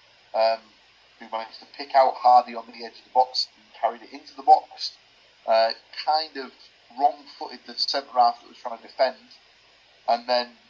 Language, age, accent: English, 30-49, British